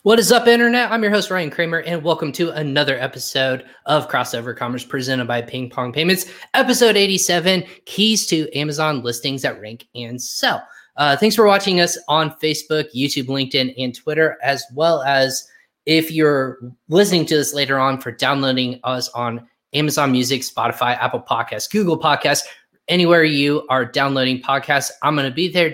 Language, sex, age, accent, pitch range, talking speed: English, male, 20-39, American, 125-160 Hz, 175 wpm